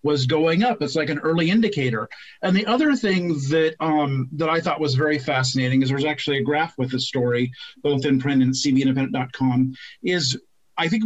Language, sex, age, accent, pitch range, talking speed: English, male, 40-59, American, 140-175 Hz, 195 wpm